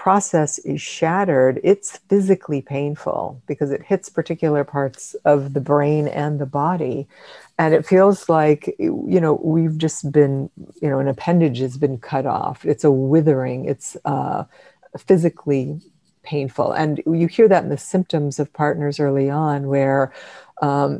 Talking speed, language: 155 wpm, English